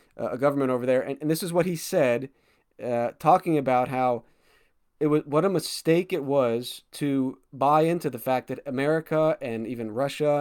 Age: 30-49